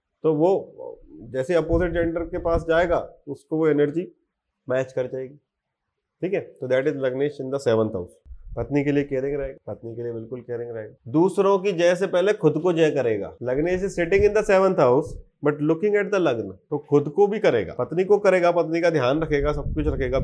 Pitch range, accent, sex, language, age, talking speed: 135-185 Hz, native, male, Hindi, 30-49, 210 wpm